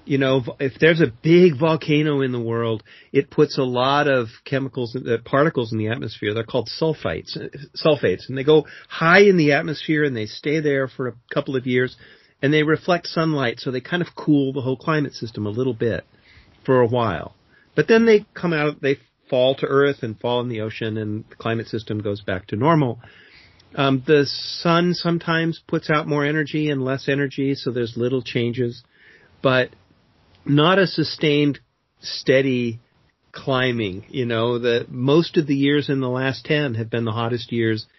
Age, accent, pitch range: 40-59, American, 115-155 Hz